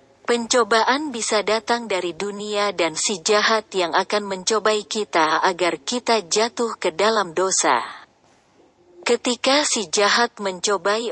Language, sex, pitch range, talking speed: Indonesian, female, 185-230 Hz, 120 wpm